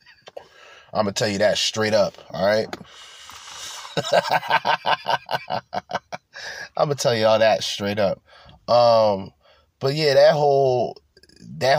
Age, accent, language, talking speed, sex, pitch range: 20-39, American, English, 125 wpm, male, 115-165 Hz